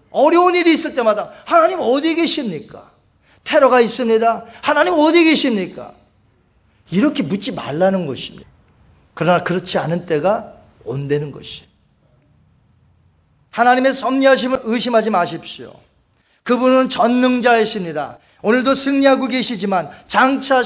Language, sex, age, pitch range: Korean, male, 40-59, 185-275 Hz